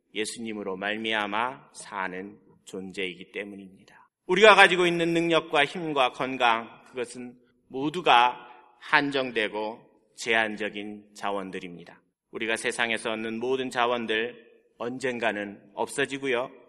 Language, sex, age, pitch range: Korean, male, 40-59, 105-145 Hz